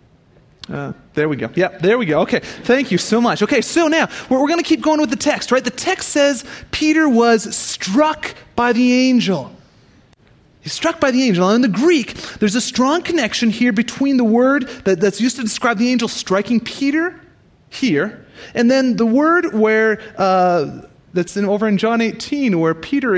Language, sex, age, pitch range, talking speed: English, male, 30-49, 210-295 Hz, 195 wpm